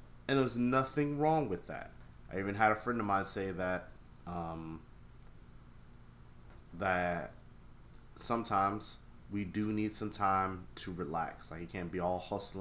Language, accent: English, American